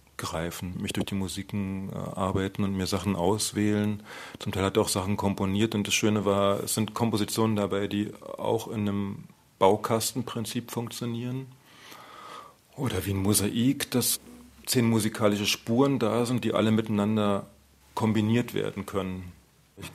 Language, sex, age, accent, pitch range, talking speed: German, male, 40-59, German, 95-105 Hz, 145 wpm